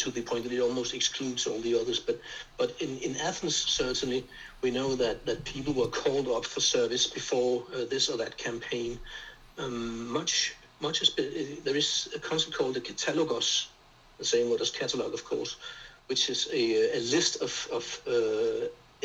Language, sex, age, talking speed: English, male, 60-79, 185 wpm